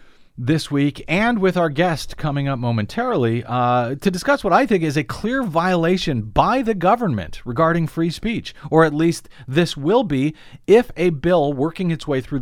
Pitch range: 120-170 Hz